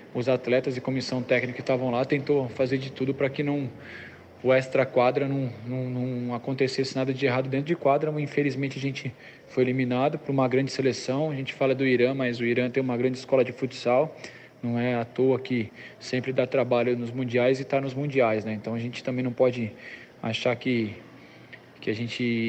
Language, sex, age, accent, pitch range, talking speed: Portuguese, male, 20-39, Brazilian, 120-135 Hz, 200 wpm